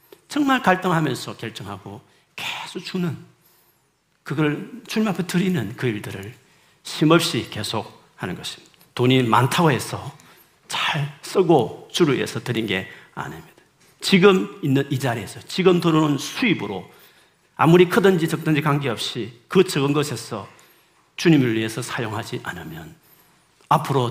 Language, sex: Korean, male